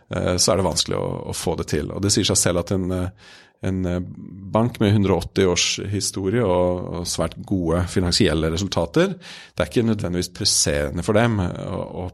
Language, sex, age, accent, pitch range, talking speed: English, male, 30-49, Norwegian, 85-105 Hz, 180 wpm